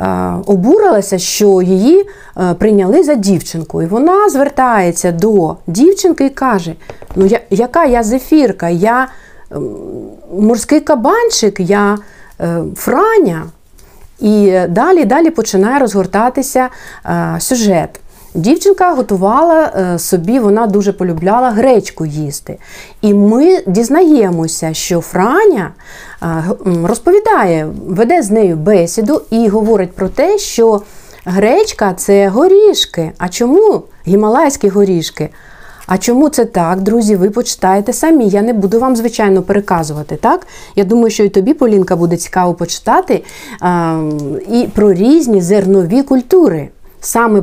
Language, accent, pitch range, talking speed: Ukrainian, native, 180-255 Hz, 110 wpm